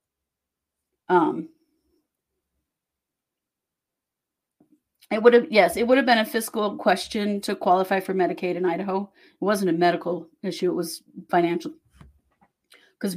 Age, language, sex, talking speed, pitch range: 40-59, English, female, 125 wpm, 180-250 Hz